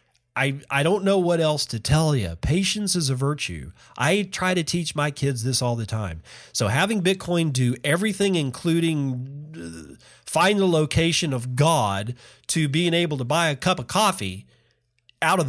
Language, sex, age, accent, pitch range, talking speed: English, male, 40-59, American, 120-165 Hz, 175 wpm